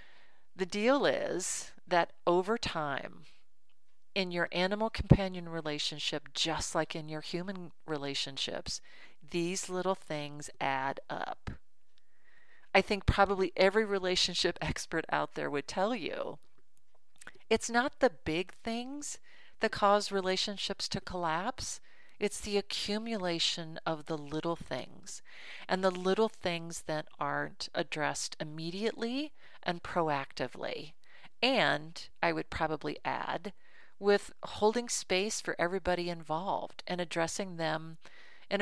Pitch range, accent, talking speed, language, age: 175-220 Hz, American, 115 wpm, English, 40-59